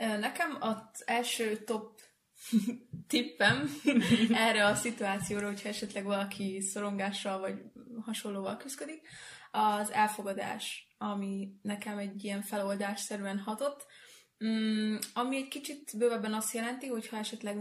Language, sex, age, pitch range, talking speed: Hungarian, female, 20-39, 205-230 Hz, 110 wpm